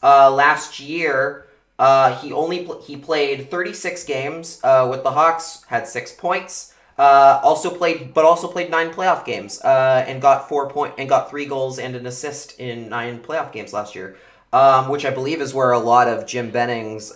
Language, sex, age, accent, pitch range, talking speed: English, male, 30-49, American, 125-155 Hz, 190 wpm